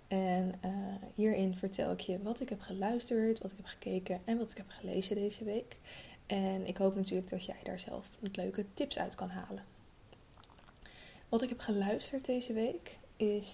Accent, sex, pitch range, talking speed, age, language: Dutch, female, 185-210 Hz, 185 wpm, 20-39, Dutch